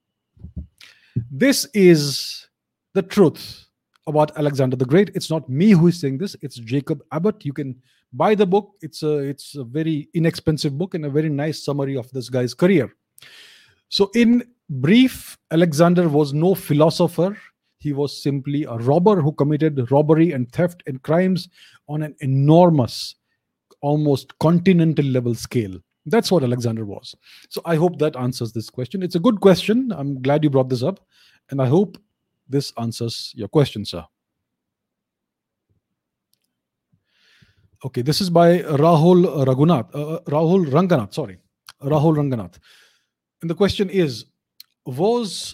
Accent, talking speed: Indian, 145 wpm